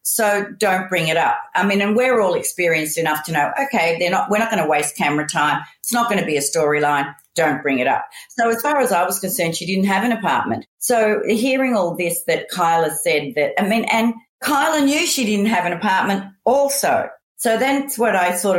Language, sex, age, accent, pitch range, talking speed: English, female, 40-59, Australian, 180-245 Hz, 230 wpm